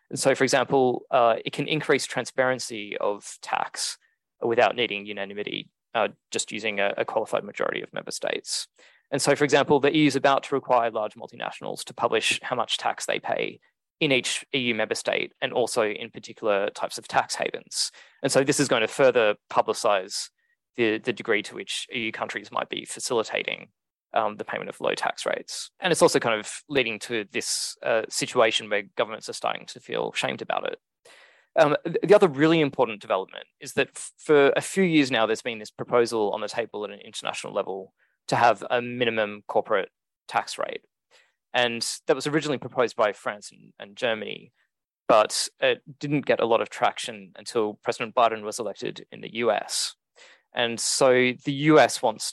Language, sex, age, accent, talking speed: English, male, 20-39, Australian, 185 wpm